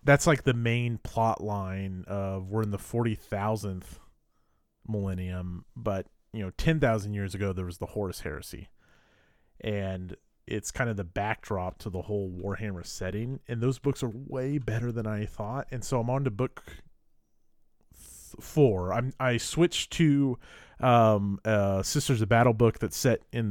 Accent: American